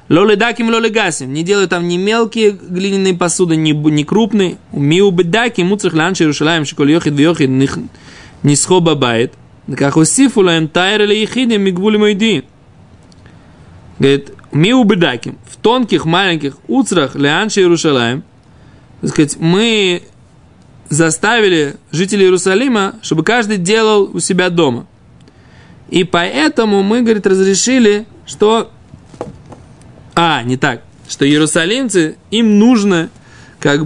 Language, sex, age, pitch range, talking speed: Russian, male, 20-39, 145-200 Hz, 115 wpm